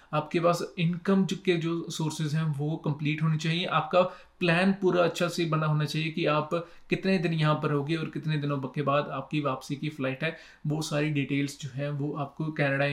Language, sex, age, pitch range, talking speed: Punjabi, male, 30-49, 145-165 Hz, 205 wpm